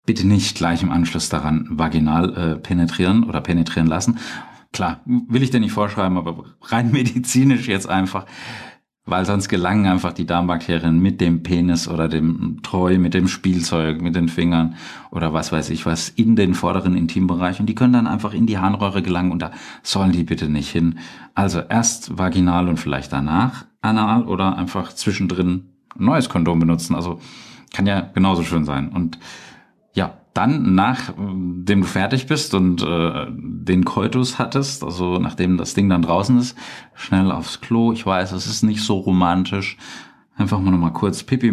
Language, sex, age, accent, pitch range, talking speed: German, male, 40-59, German, 85-100 Hz, 170 wpm